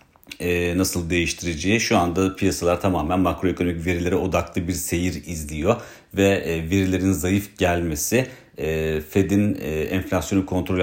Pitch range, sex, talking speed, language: 85-95 Hz, male, 125 wpm, Turkish